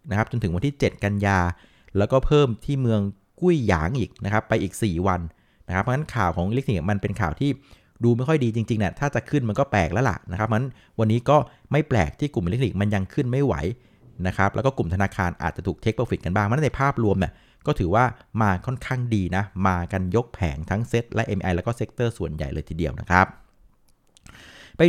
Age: 60-79